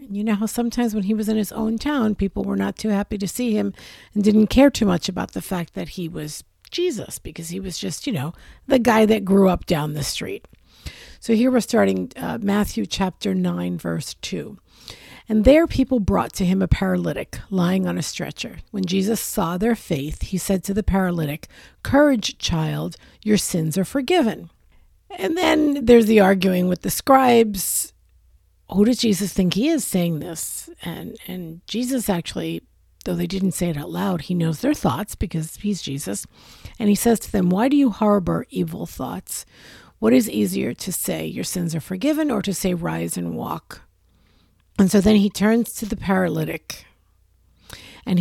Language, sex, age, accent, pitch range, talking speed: English, female, 50-69, American, 145-220 Hz, 190 wpm